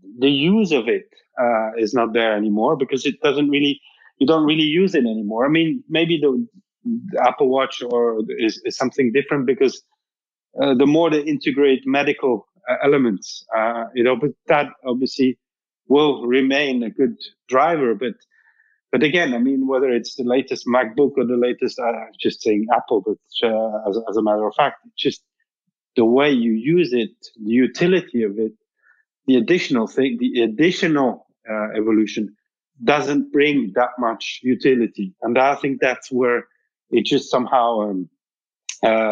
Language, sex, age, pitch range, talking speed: English, male, 30-49, 120-165 Hz, 165 wpm